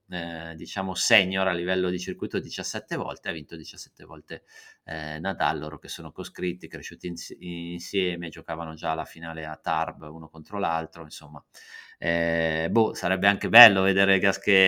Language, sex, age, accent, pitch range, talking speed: Italian, male, 30-49, native, 85-95 Hz, 155 wpm